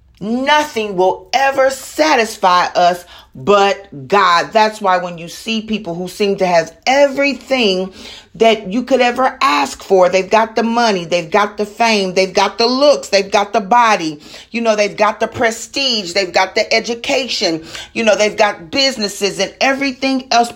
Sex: female